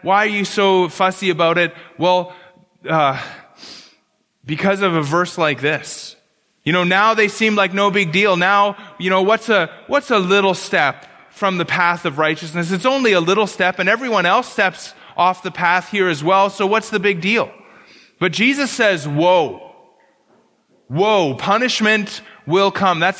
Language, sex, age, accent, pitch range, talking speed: English, male, 20-39, American, 175-210 Hz, 175 wpm